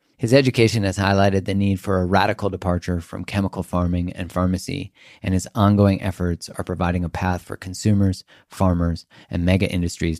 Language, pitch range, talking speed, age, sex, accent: English, 85-105 Hz, 170 wpm, 30-49, male, American